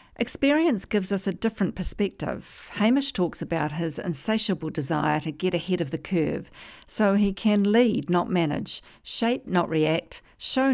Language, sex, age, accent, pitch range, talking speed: English, female, 50-69, Australian, 160-210 Hz, 155 wpm